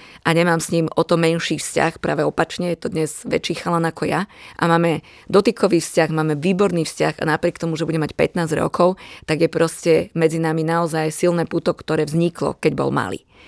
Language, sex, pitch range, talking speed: Slovak, female, 165-185 Hz, 200 wpm